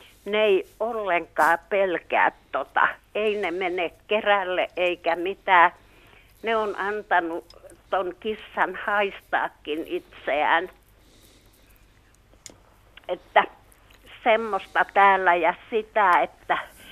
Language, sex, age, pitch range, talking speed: Finnish, female, 60-79, 165-200 Hz, 85 wpm